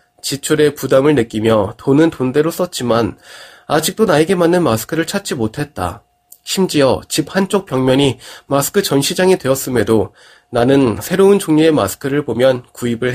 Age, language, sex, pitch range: 20-39, Korean, male, 125-175 Hz